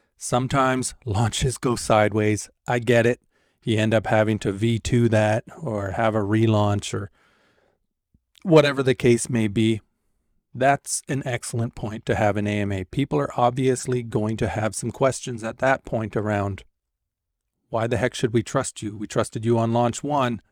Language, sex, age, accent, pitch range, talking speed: English, male, 40-59, American, 105-125 Hz, 165 wpm